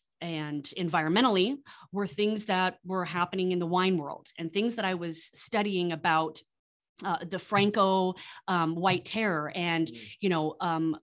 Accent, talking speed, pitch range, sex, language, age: American, 150 wpm, 165-200 Hz, female, English, 30-49